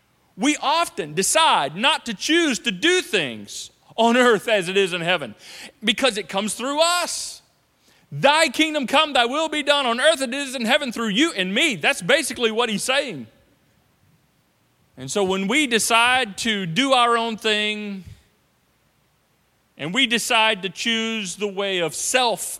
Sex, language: male, English